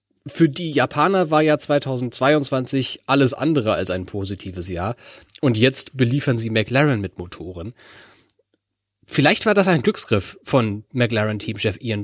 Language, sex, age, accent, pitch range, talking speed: German, male, 30-49, German, 110-140 Hz, 135 wpm